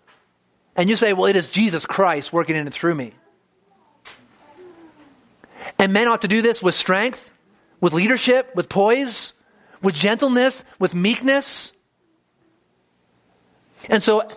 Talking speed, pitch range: 130 wpm, 175-230 Hz